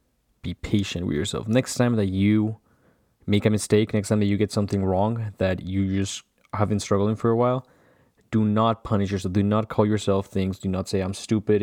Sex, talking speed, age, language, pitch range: male, 210 wpm, 20-39, English, 100-110 Hz